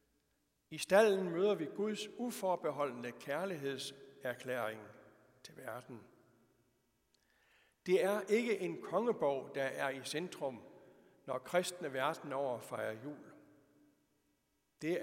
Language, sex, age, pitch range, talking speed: Danish, male, 60-79, 140-205 Hz, 95 wpm